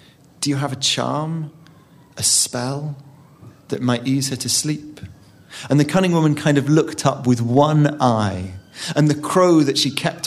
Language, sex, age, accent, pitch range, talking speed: English, male, 40-59, British, 120-150 Hz, 175 wpm